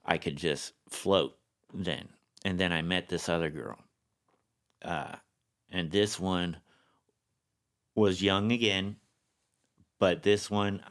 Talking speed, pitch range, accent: 120 wpm, 85-105 Hz, American